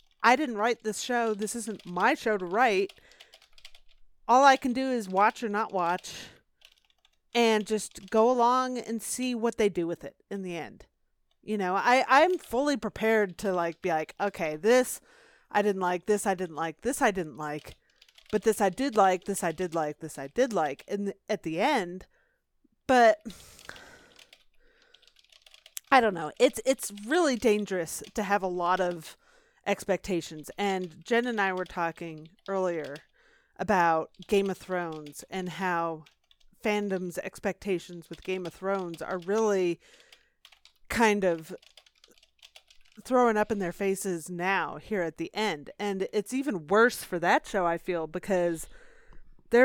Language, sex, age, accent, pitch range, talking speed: English, female, 30-49, American, 180-230 Hz, 160 wpm